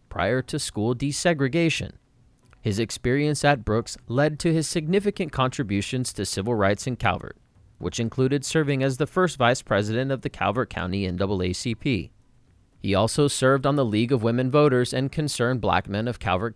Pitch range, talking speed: 100-135 Hz, 165 wpm